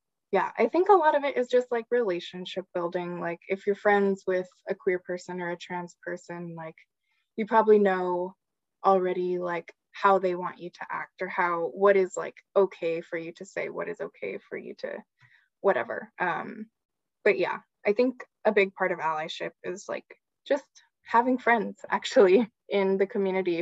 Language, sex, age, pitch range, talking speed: English, female, 20-39, 180-220 Hz, 185 wpm